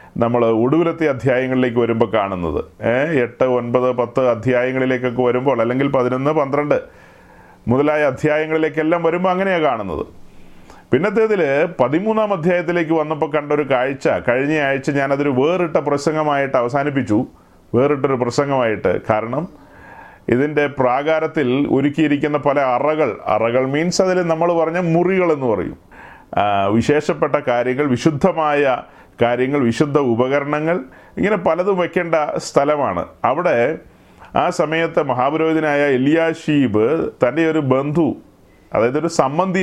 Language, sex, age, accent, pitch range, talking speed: Malayalam, male, 30-49, native, 130-165 Hz, 100 wpm